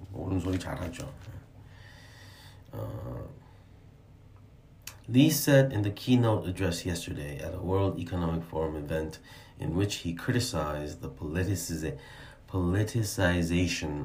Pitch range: 85-120 Hz